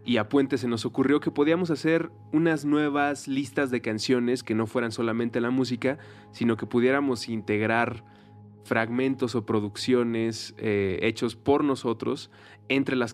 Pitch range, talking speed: 105-130 Hz, 150 wpm